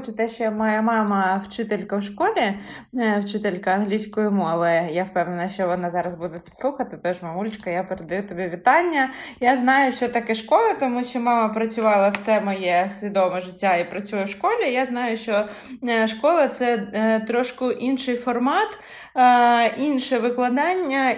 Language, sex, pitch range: Ukrainian, female, 205-260 Hz